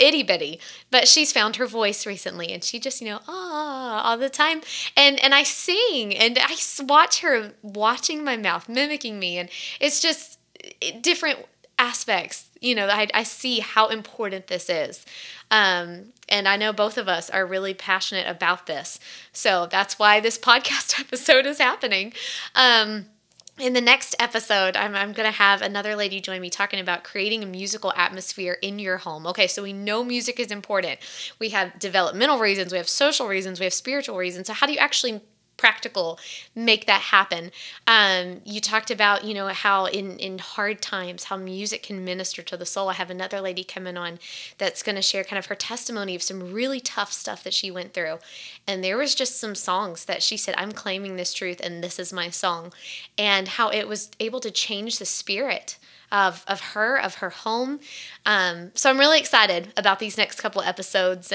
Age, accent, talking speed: 20-39, American, 195 wpm